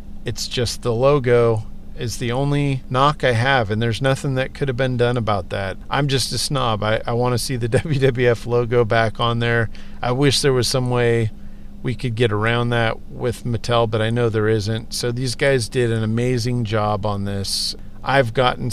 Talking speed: 205 wpm